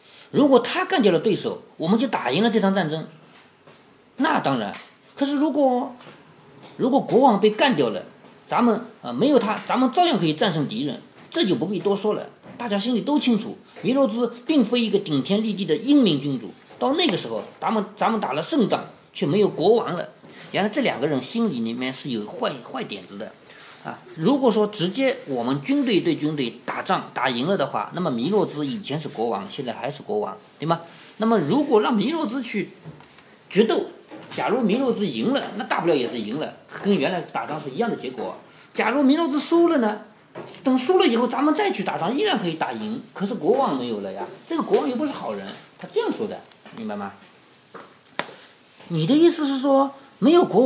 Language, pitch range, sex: Chinese, 200-280 Hz, male